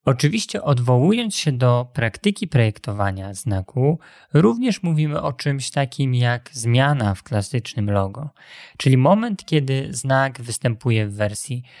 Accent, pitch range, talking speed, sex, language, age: native, 120-145 Hz, 120 wpm, male, Polish, 20-39